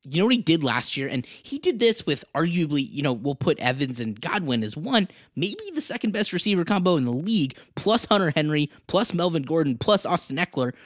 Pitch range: 130-185 Hz